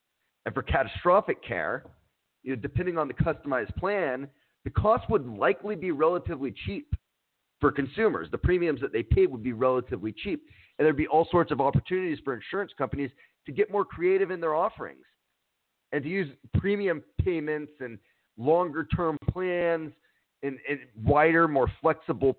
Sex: male